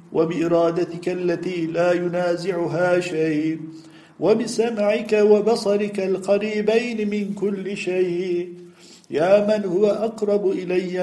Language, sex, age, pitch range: Turkish, male, 50-69, 175-210 Hz